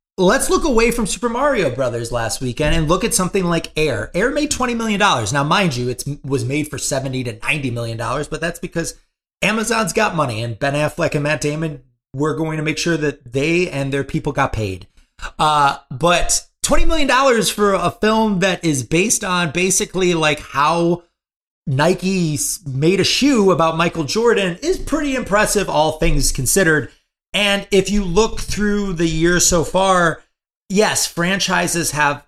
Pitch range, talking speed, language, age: 135-185 Hz, 175 wpm, English, 30-49